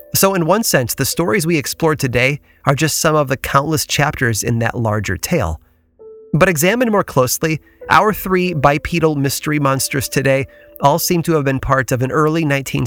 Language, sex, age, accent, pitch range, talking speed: English, male, 30-49, American, 120-165 Hz, 180 wpm